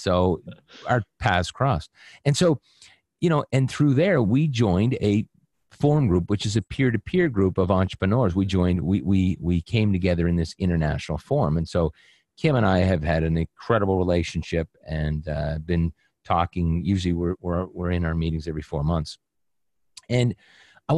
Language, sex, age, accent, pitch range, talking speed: English, male, 40-59, American, 85-115 Hz, 180 wpm